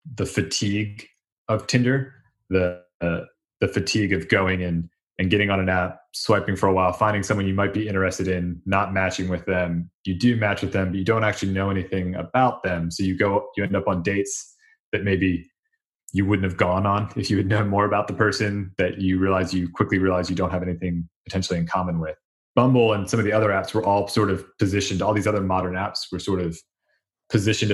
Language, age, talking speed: English, 20-39, 220 wpm